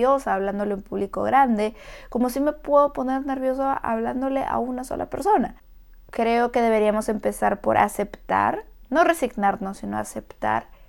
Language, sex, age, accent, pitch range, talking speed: Spanish, female, 30-49, Mexican, 215-275 Hz, 140 wpm